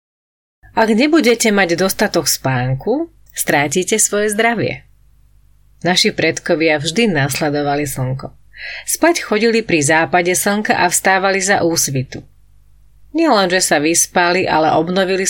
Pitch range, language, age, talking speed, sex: 150-200 Hz, Slovak, 30-49, 105 wpm, female